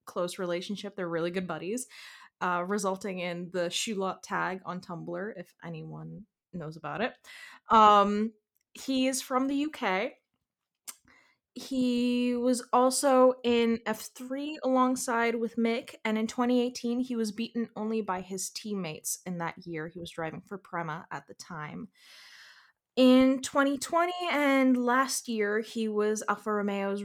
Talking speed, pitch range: 150 wpm, 185-245 Hz